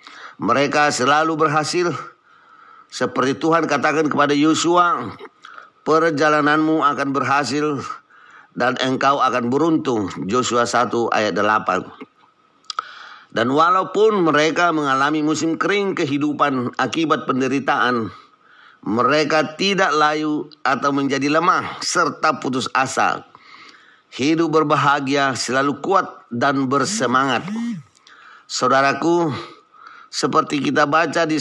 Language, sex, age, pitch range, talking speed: Indonesian, male, 50-69, 140-165 Hz, 90 wpm